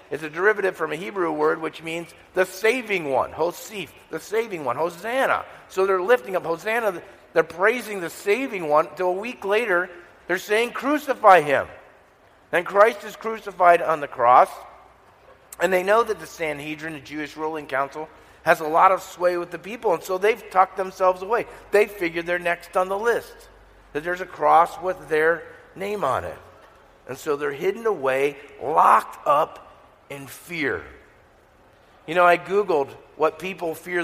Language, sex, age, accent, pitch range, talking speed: English, male, 50-69, American, 160-205 Hz, 175 wpm